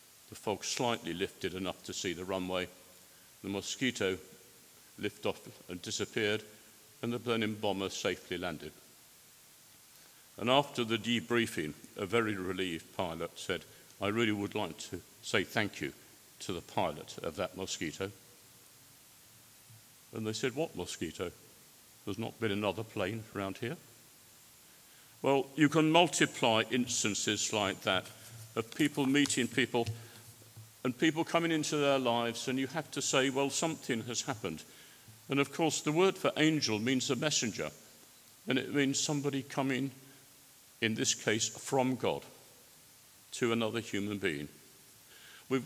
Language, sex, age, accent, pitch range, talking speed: English, male, 50-69, British, 105-135 Hz, 140 wpm